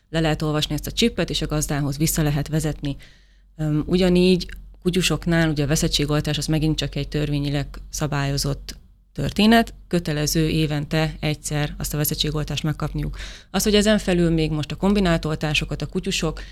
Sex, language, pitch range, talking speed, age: female, Hungarian, 150-175 Hz, 150 wpm, 30-49